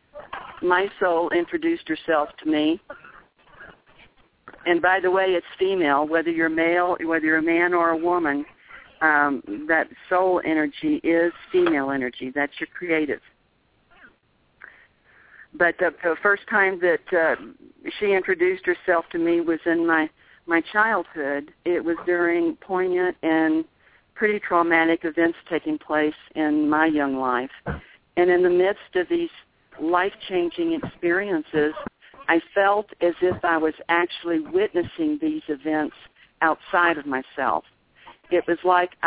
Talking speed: 135 wpm